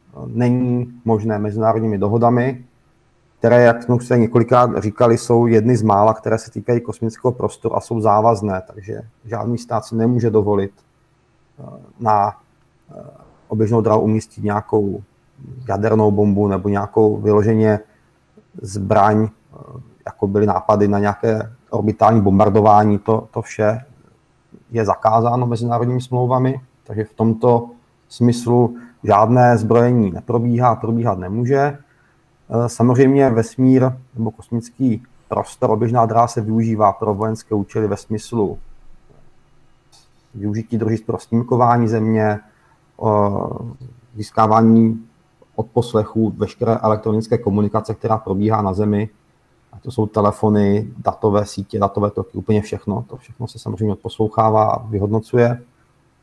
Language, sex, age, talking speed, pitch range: Czech, male, 30-49, 110 wpm, 105-120 Hz